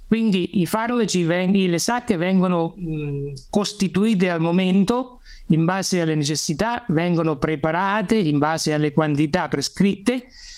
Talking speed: 100 wpm